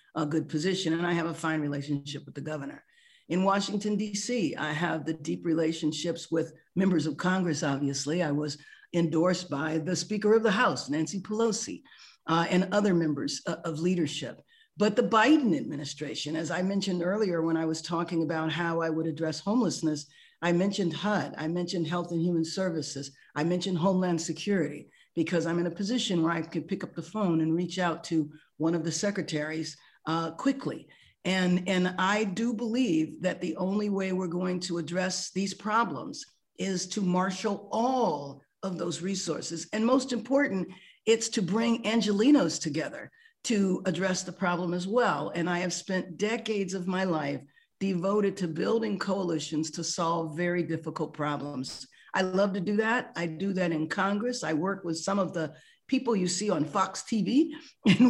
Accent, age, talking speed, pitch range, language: American, 50-69, 180 wpm, 160-205 Hz, English